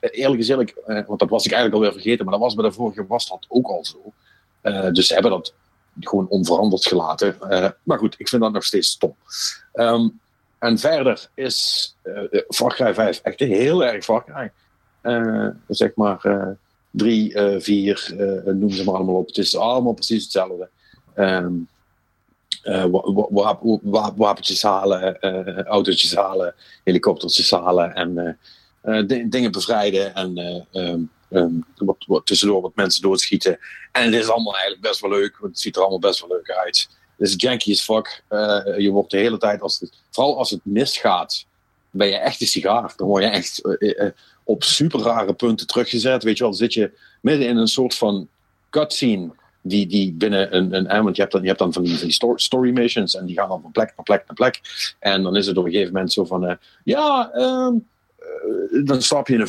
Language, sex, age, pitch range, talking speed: Dutch, male, 50-69, 95-130 Hz, 200 wpm